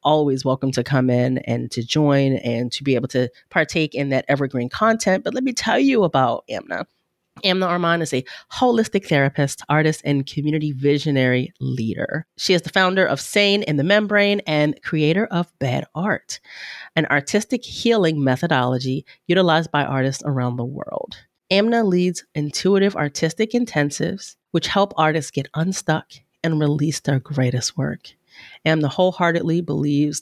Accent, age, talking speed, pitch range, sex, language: American, 30-49, 155 wpm, 140-190 Hz, female, English